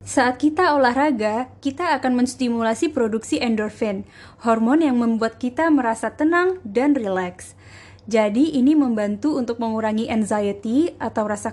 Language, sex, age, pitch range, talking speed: Indonesian, female, 20-39, 220-270 Hz, 125 wpm